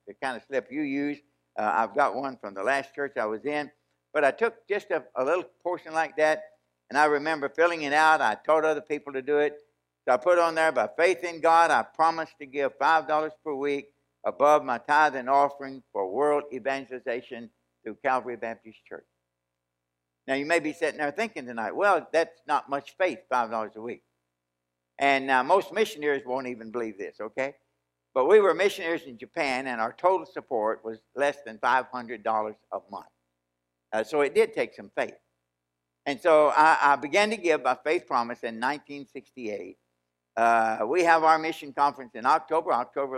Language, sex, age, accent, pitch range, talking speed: English, male, 60-79, American, 110-155 Hz, 190 wpm